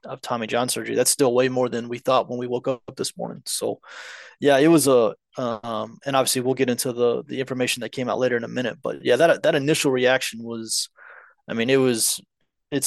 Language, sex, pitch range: English, male, 120-130 Hz